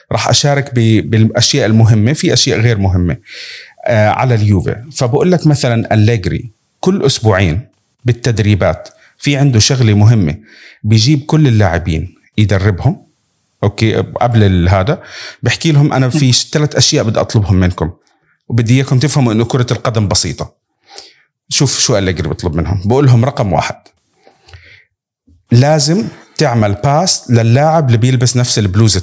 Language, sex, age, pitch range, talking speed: Arabic, male, 40-59, 110-135 Hz, 125 wpm